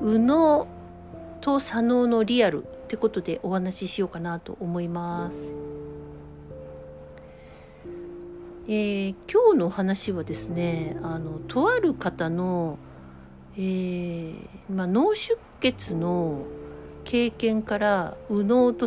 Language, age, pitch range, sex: Japanese, 60-79, 160-225 Hz, female